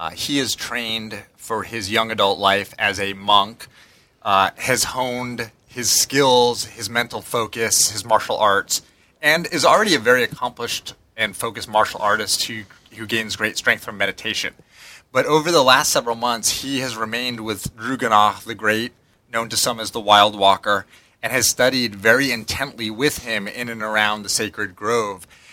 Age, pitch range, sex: 30-49, 105-120 Hz, male